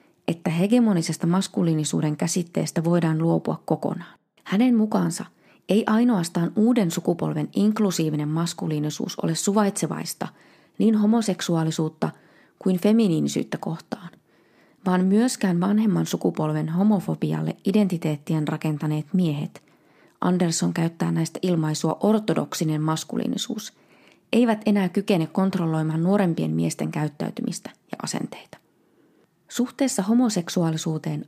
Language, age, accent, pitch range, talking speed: Finnish, 20-39, native, 160-205 Hz, 90 wpm